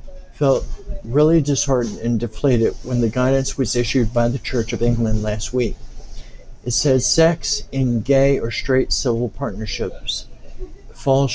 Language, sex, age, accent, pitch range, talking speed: English, male, 60-79, American, 115-135 Hz, 145 wpm